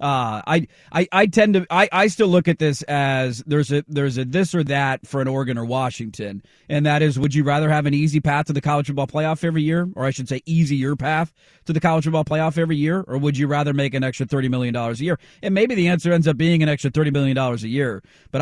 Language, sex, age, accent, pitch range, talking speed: English, male, 30-49, American, 140-170 Hz, 260 wpm